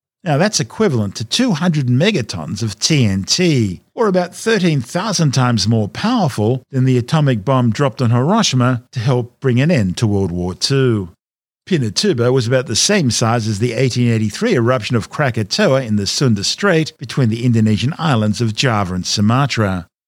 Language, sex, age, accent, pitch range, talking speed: English, male, 50-69, Australian, 110-150 Hz, 160 wpm